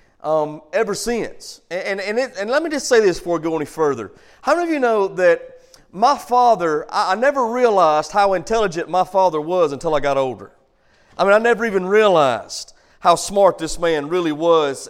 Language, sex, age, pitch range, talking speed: English, male, 40-59, 165-270 Hz, 195 wpm